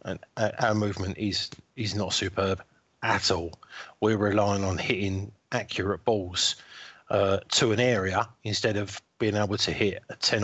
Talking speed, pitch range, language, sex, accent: 155 wpm, 95-110 Hz, English, male, British